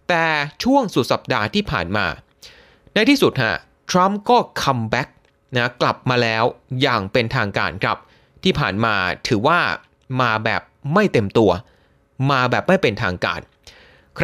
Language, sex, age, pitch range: Thai, male, 20-39, 115-180 Hz